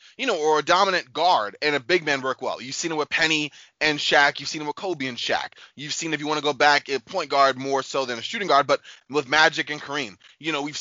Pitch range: 145-210 Hz